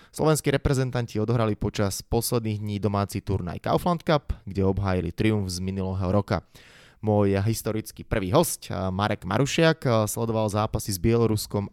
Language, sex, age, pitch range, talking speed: Slovak, male, 20-39, 95-125 Hz, 135 wpm